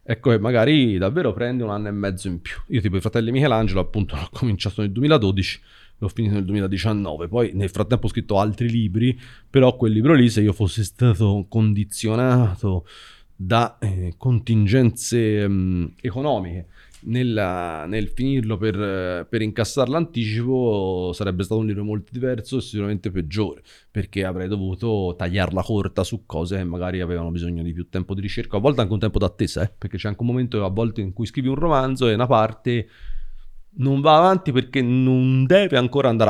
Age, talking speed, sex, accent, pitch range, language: 30-49, 175 wpm, male, native, 100-120 Hz, Italian